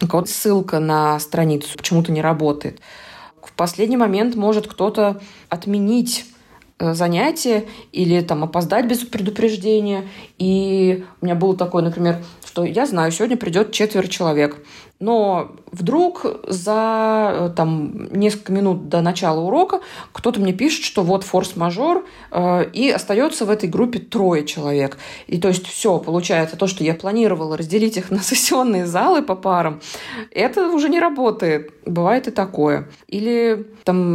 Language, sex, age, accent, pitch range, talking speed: Russian, female, 20-39, native, 175-230 Hz, 135 wpm